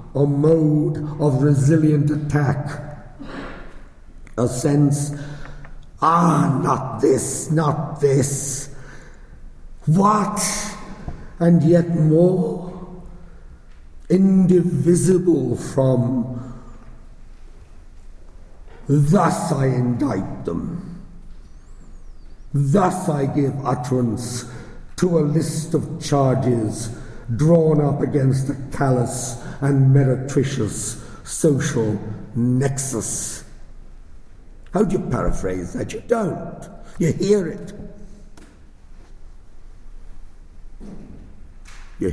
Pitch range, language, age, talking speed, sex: 95-155 Hz, English, 60-79, 75 wpm, male